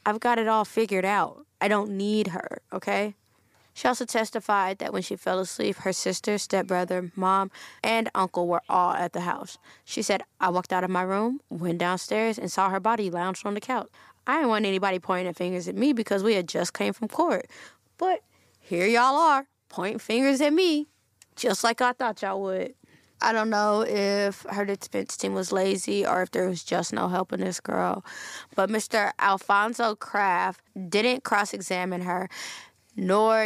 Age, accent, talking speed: 20-39, American, 185 wpm